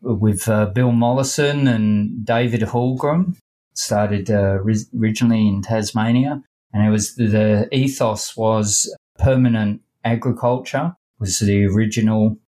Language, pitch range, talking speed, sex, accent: English, 100-115 Hz, 120 wpm, male, Australian